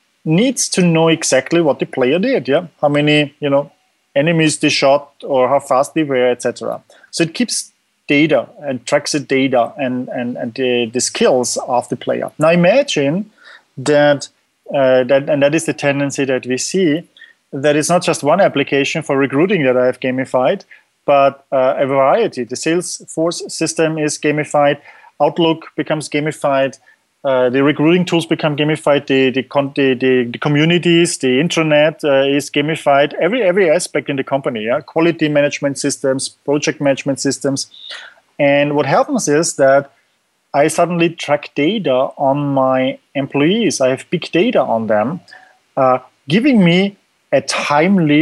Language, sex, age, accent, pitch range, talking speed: English, male, 30-49, German, 135-160 Hz, 160 wpm